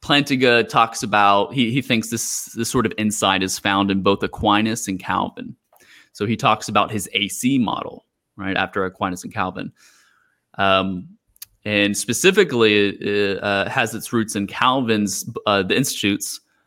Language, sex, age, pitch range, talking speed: English, male, 20-39, 100-120 Hz, 150 wpm